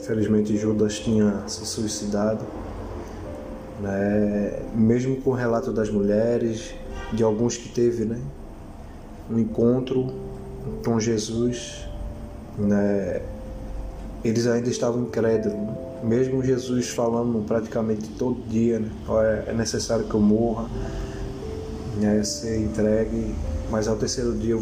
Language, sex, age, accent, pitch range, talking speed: Portuguese, male, 20-39, Brazilian, 100-120 Hz, 120 wpm